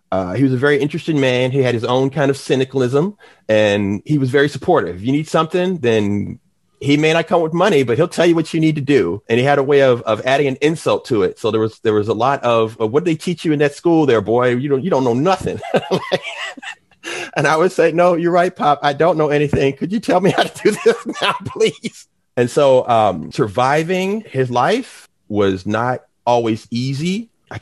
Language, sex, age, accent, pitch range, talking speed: English, male, 30-49, American, 110-150 Hz, 235 wpm